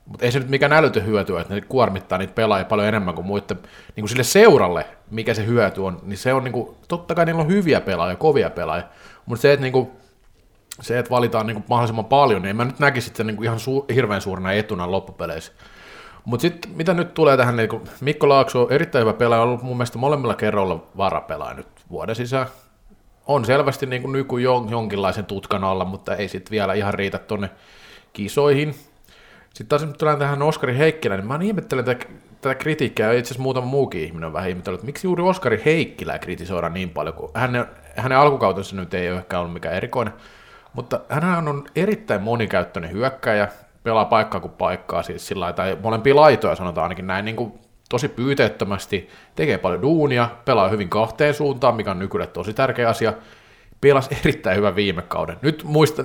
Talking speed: 185 wpm